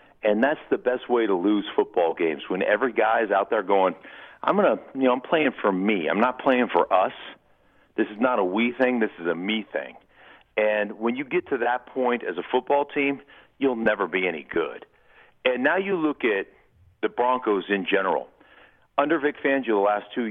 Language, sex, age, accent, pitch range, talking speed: English, male, 50-69, American, 110-175 Hz, 215 wpm